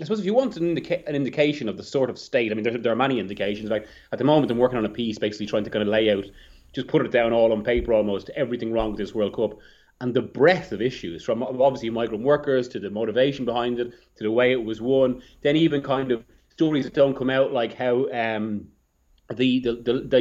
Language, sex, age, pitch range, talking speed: English, male, 30-49, 110-135 Hz, 260 wpm